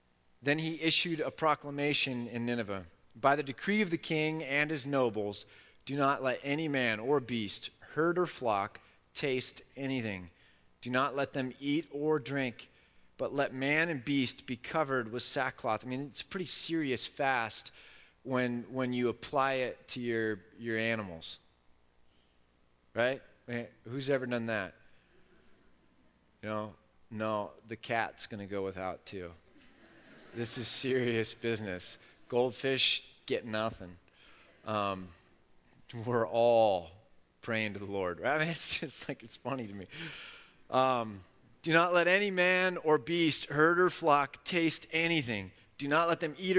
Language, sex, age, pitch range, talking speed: English, male, 30-49, 110-150 Hz, 155 wpm